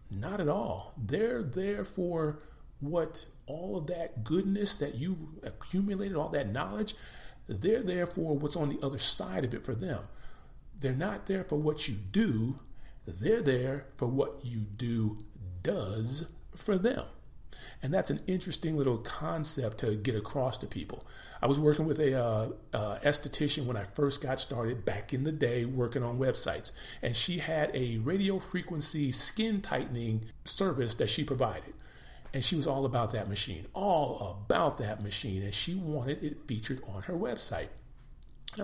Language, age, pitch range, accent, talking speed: English, 50-69, 120-165 Hz, American, 170 wpm